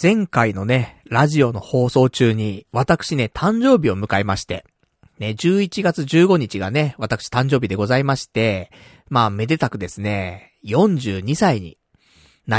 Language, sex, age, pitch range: Japanese, male, 40-59, 105-160 Hz